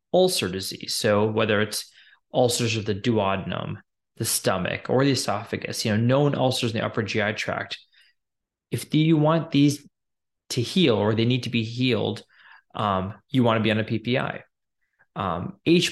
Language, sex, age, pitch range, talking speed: English, male, 20-39, 105-130 Hz, 170 wpm